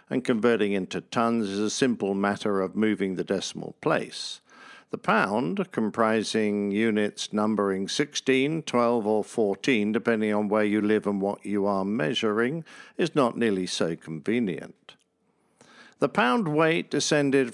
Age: 50-69